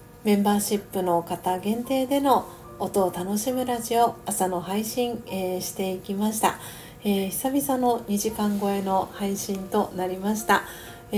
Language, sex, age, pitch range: Japanese, female, 40-59, 190-225 Hz